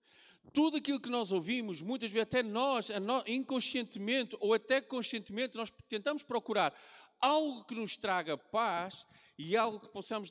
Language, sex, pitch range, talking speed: Portuguese, male, 190-260 Hz, 145 wpm